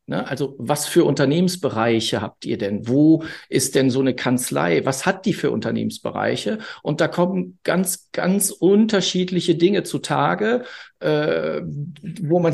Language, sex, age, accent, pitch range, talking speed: German, male, 50-69, German, 130-175 Hz, 140 wpm